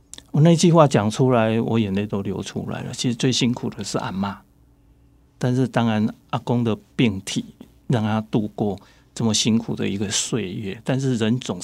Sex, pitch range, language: male, 110-135 Hz, Chinese